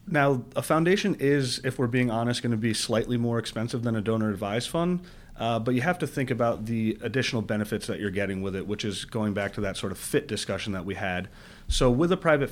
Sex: male